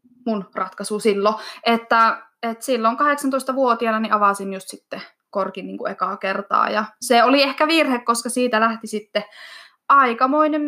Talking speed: 140 wpm